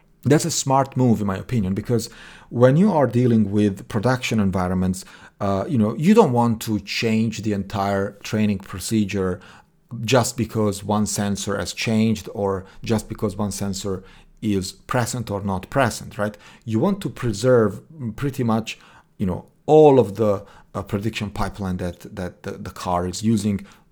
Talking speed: 165 wpm